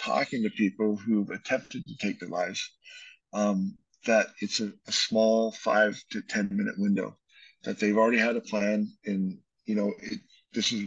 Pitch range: 105-155 Hz